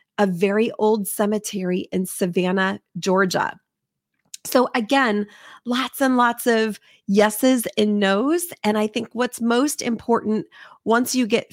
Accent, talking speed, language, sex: American, 130 wpm, English, female